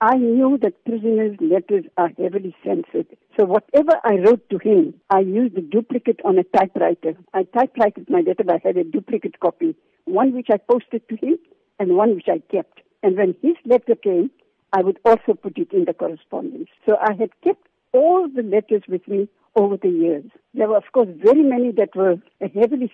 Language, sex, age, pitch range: English, female, 60-79, 195-310 Hz